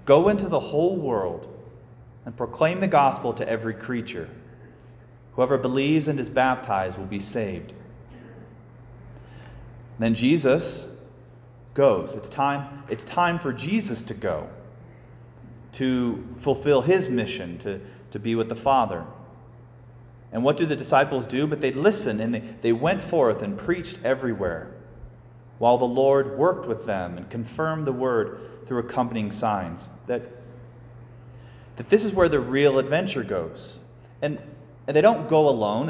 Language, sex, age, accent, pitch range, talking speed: English, male, 30-49, American, 120-140 Hz, 145 wpm